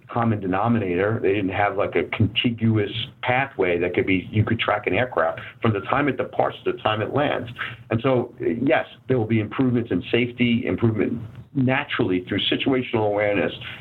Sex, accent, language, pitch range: male, American, English, 100-120 Hz